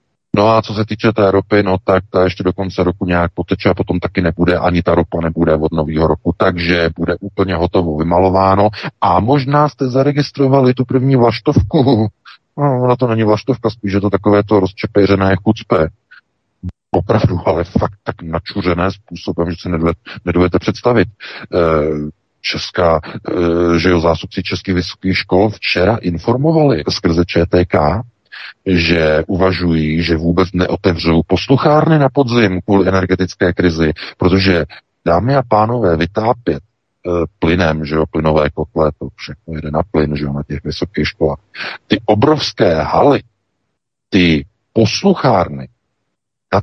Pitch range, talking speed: 85-120 Hz, 140 wpm